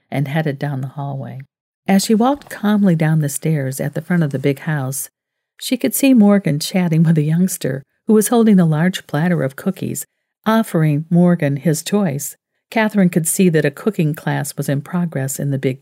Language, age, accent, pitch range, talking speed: English, 50-69, American, 145-195 Hz, 195 wpm